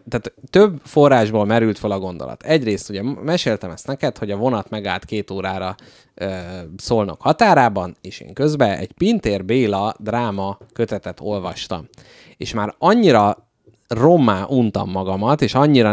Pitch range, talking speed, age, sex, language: 100-130 Hz, 140 wpm, 20-39, male, Hungarian